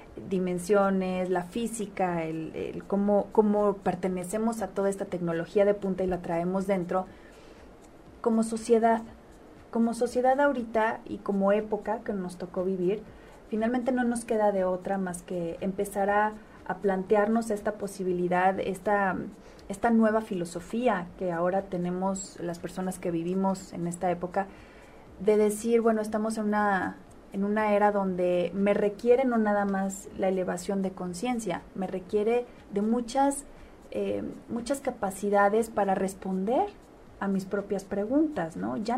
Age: 30-49